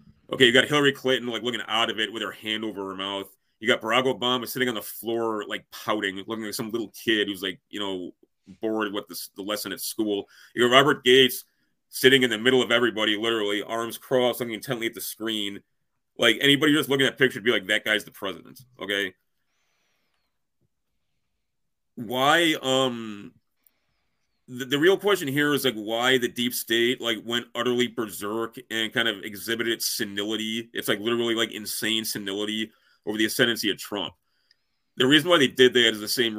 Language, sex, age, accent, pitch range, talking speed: English, male, 30-49, American, 105-125 Hz, 195 wpm